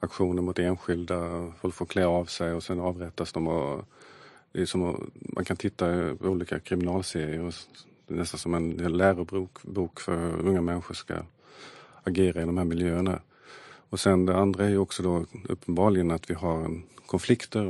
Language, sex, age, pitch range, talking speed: Swedish, male, 40-59, 85-100 Hz, 155 wpm